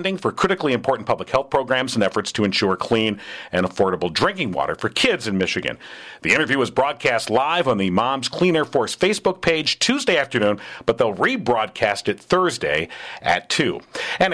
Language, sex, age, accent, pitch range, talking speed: English, male, 50-69, American, 105-165 Hz, 175 wpm